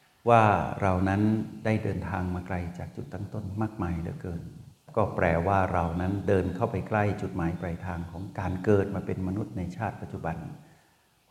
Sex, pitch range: male, 95-110 Hz